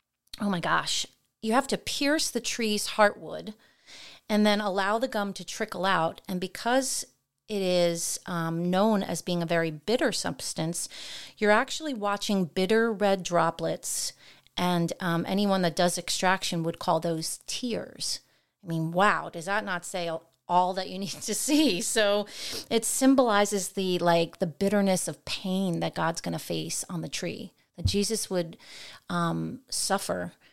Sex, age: female, 30-49